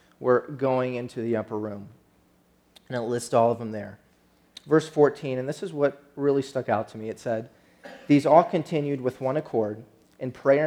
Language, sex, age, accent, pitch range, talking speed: English, male, 30-49, American, 120-150 Hz, 190 wpm